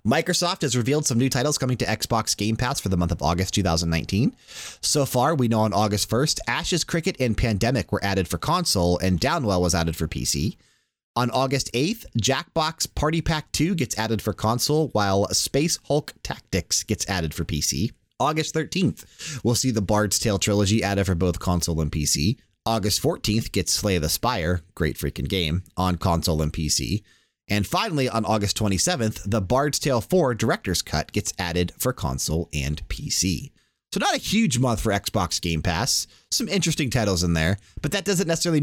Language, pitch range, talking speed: English, 85-130 Hz, 185 wpm